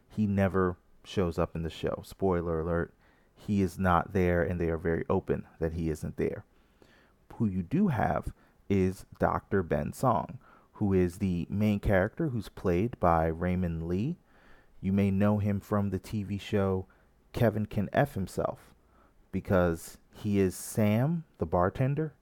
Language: English